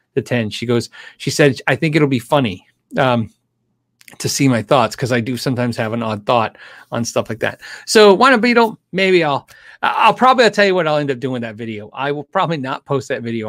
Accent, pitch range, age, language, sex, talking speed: American, 120-180 Hz, 30-49, English, male, 240 wpm